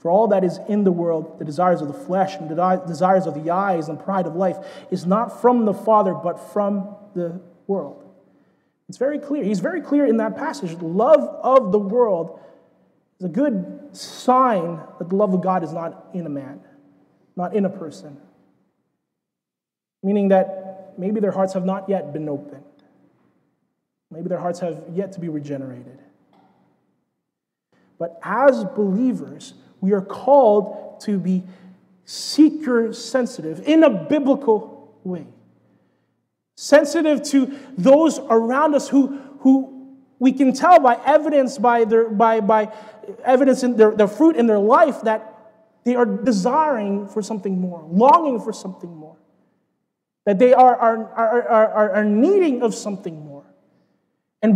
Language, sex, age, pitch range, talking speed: English, male, 30-49, 185-255 Hz, 155 wpm